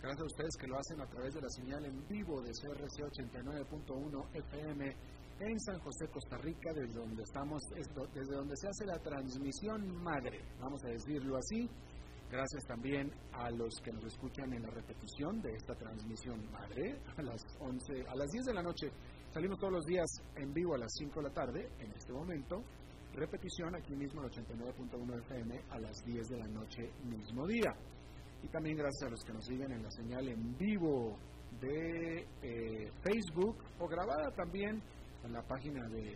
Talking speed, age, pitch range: 180 wpm, 40-59, 115-150 Hz